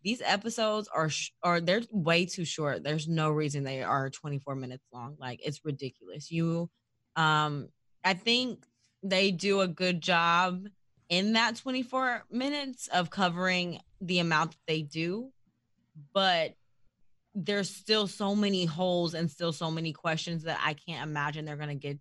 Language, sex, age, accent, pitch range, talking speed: English, female, 20-39, American, 150-190 Hz, 160 wpm